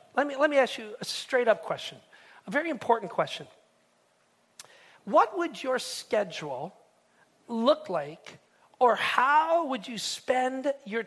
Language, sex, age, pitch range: English, male, 40-59, 200-285 Hz